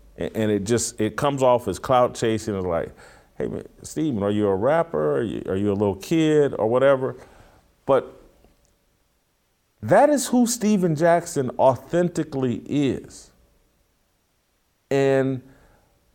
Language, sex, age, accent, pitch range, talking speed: English, male, 40-59, American, 100-130 Hz, 125 wpm